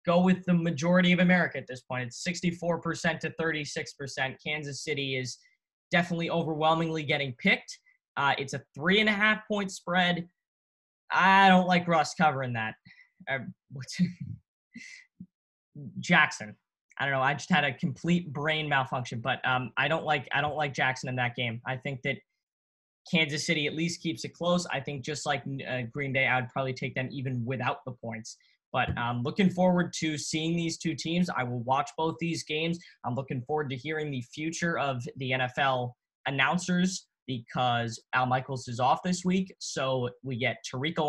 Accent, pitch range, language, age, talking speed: American, 130-170 Hz, English, 10-29, 170 wpm